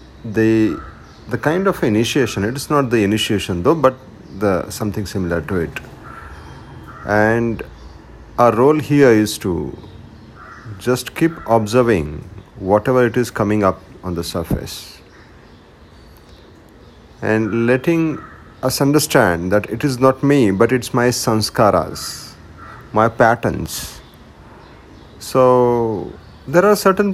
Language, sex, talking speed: Hindi, male, 115 wpm